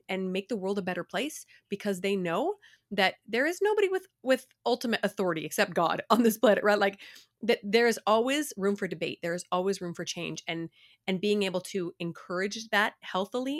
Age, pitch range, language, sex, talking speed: 30-49, 170-220 Hz, English, female, 200 wpm